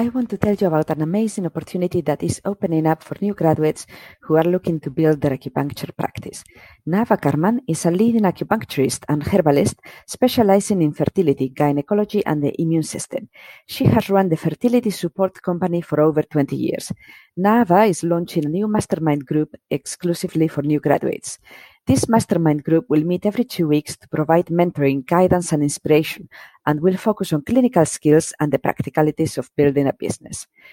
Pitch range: 150-195 Hz